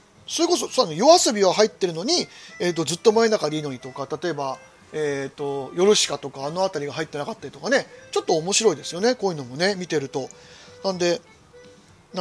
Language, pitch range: Japanese, 150-225 Hz